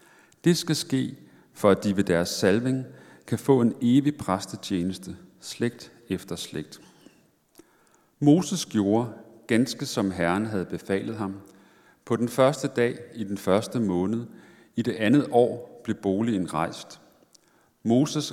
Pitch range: 95-130 Hz